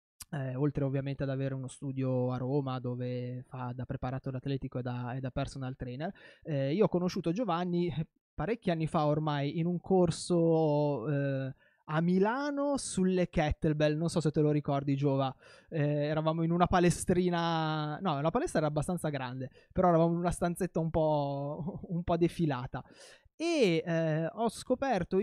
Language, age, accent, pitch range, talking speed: Italian, 20-39, native, 145-185 Hz, 160 wpm